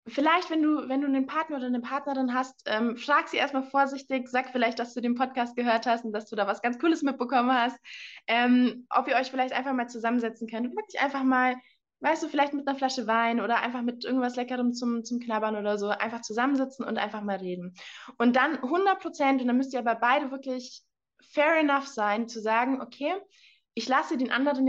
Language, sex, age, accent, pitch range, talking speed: German, female, 20-39, German, 230-270 Hz, 215 wpm